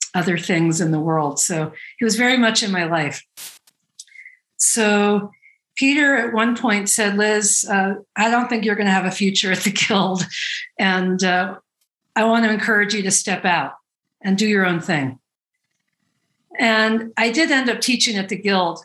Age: 50-69